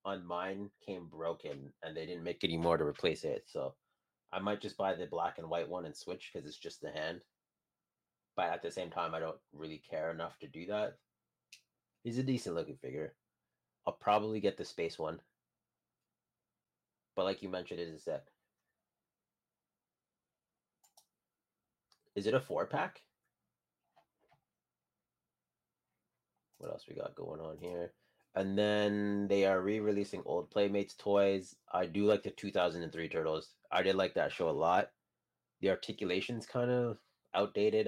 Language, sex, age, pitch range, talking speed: English, male, 30-49, 85-110 Hz, 160 wpm